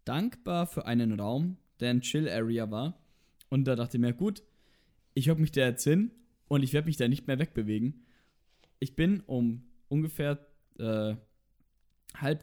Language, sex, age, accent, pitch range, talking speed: German, male, 10-29, German, 120-155 Hz, 165 wpm